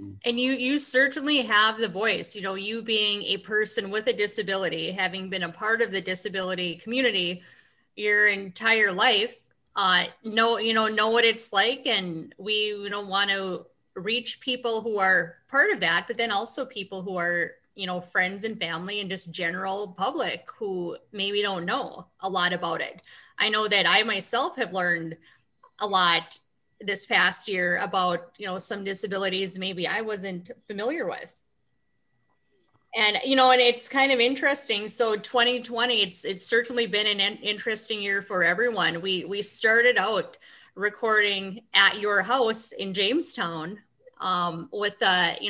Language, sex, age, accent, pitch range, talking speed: English, female, 20-39, American, 190-230 Hz, 165 wpm